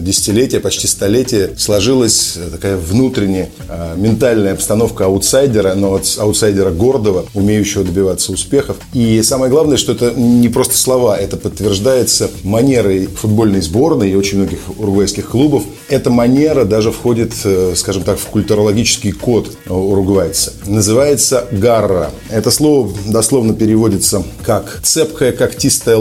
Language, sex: Russian, male